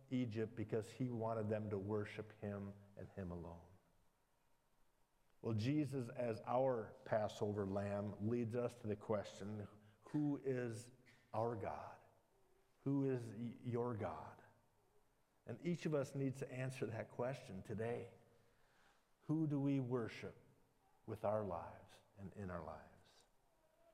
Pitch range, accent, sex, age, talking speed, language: 105-125 Hz, American, male, 50-69, 130 wpm, English